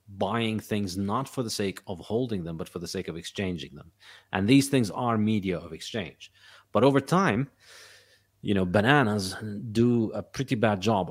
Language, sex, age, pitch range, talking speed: English, male, 30-49, 90-110 Hz, 185 wpm